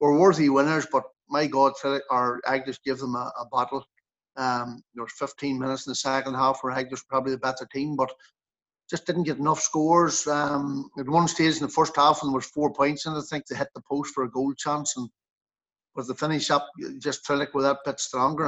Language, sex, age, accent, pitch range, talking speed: English, male, 60-79, Irish, 130-145 Hz, 220 wpm